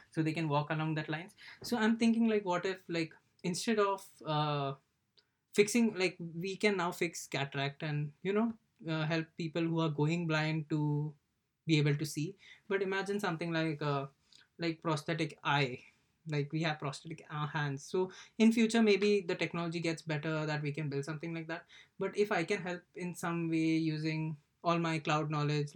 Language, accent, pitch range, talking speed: English, Indian, 150-180 Hz, 185 wpm